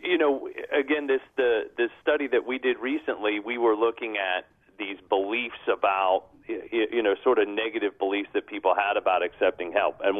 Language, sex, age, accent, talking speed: English, male, 40-59, American, 180 wpm